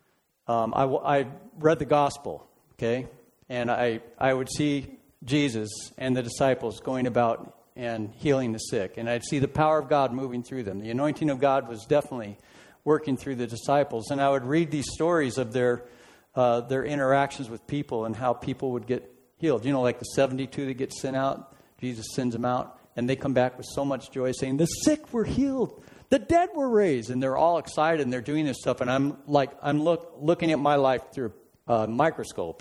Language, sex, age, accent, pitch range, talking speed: English, male, 50-69, American, 120-150 Hz, 210 wpm